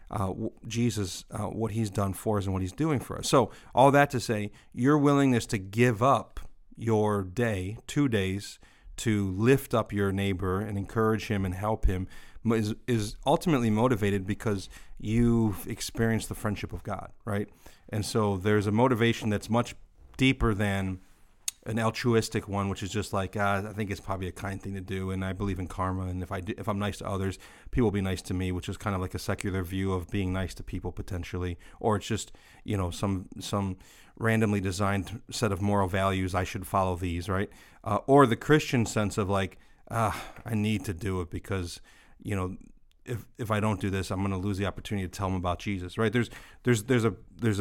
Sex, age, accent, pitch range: male, 40-59, American, 95-115 Hz